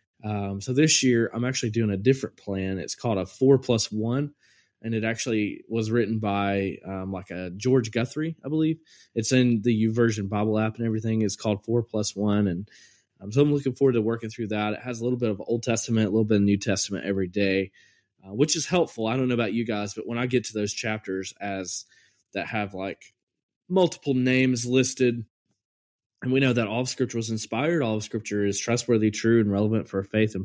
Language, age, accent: English, 20-39, American